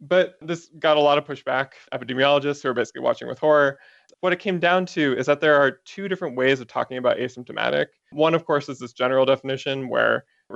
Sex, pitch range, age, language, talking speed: male, 130-160 Hz, 20-39, English, 220 wpm